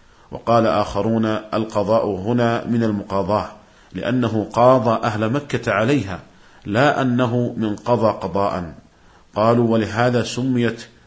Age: 50-69